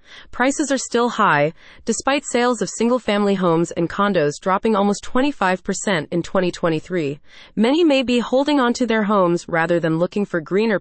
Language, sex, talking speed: English, female, 155 wpm